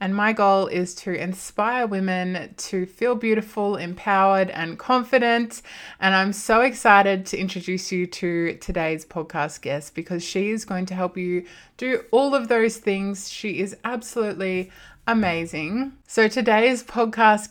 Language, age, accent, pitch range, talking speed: English, 20-39, Australian, 180-220 Hz, 145 wpm